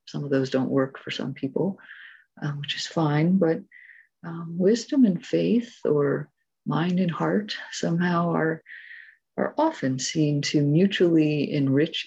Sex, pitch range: female, 140-185 Hz